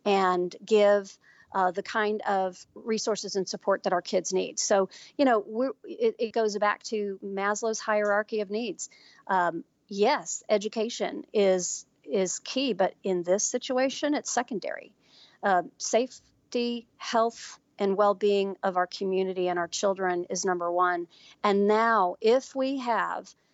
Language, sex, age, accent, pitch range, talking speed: English, female, 40-59, American, 190-230 Hz, 145 wpm